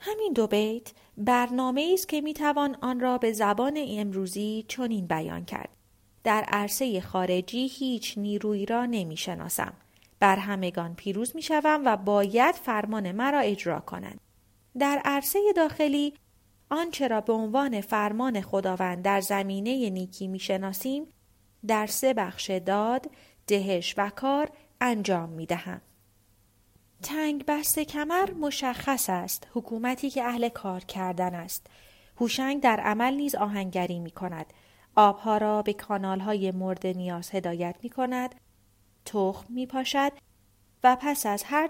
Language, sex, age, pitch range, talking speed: Persian, female, 30-49, 190-255 Hz, 130 wpm